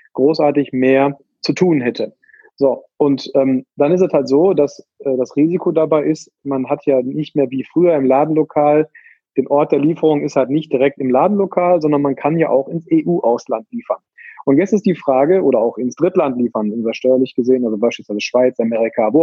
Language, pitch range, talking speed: German, 135-170 Hz, 200 wpm